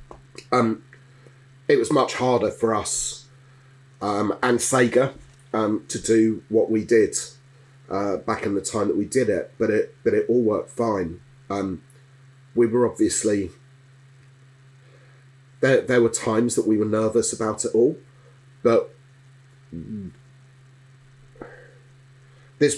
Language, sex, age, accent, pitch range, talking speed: English, male, 30-49, British, 110-135 Hz, 130 wpm